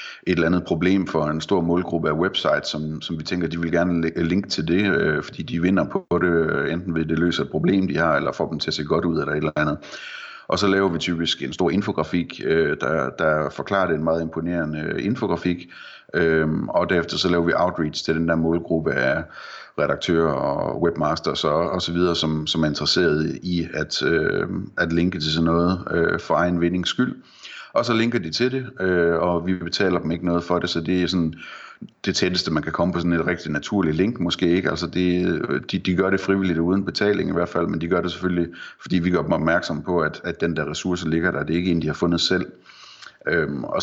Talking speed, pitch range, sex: 235 wpm, 80-90 Hz, male